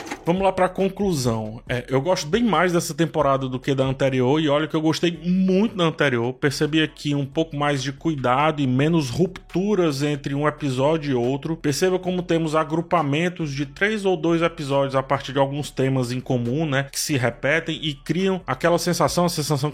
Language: Portuguese